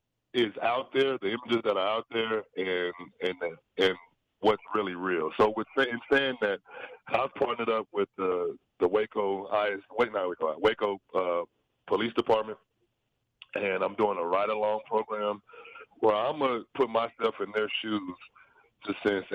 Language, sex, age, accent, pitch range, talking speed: English, male, 30-49, American, 100-120 Hz, 150 wpm